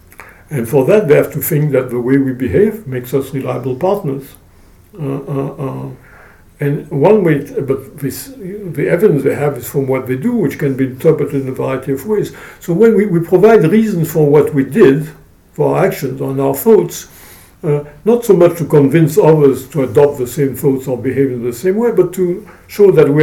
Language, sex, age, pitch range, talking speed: English, male, 60-79, 130-170 Hz, 215 wpm